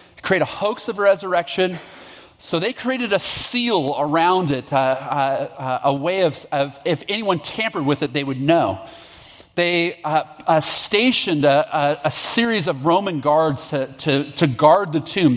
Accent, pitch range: American, 130-160 Hz